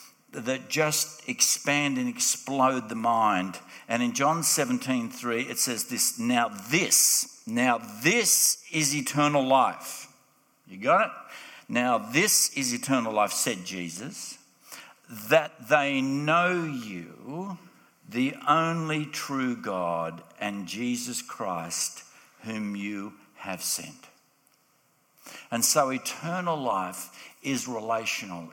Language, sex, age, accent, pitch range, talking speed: English, male, 60-79, Australian, 105-150 Hz, 110 wpm